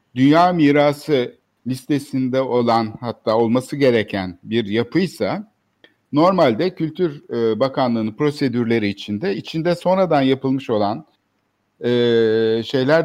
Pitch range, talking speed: 110-155 Hz, 85 wpm